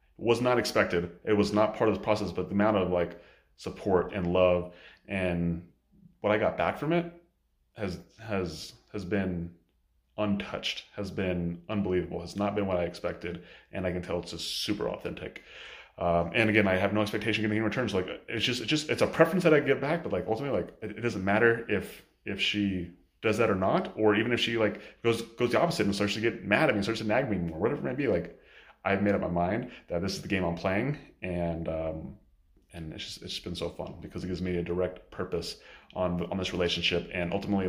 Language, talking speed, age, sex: English, 235 wpm, 30-49, male